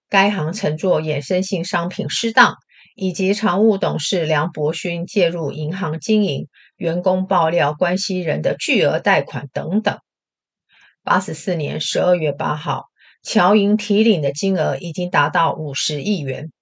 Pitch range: 160-210 Hz